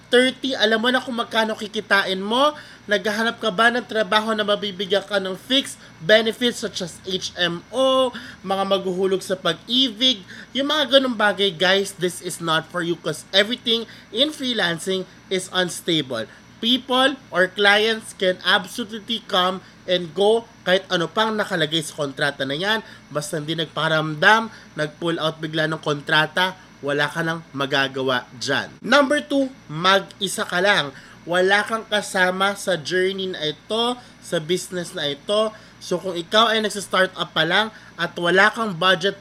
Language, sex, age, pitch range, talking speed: Filipino, male, 20-39, 170-220 Hz, 155 wpm